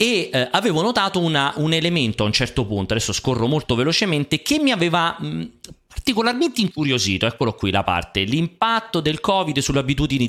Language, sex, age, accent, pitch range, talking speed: Italian, male, 30-49, native, 105-155 Hz, 175 wpm